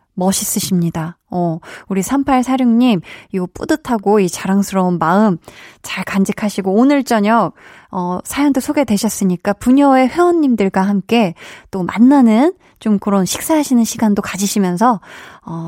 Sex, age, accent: female, 20-39, native